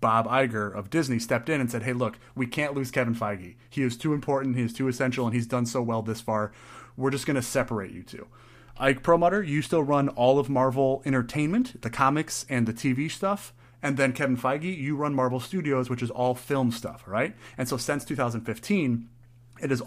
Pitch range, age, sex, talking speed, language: 120-140 Hz, 30-49, male, 215 wpm, English